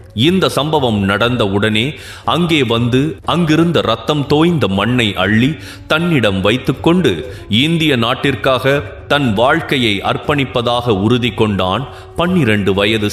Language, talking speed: Tamil, 100 wpm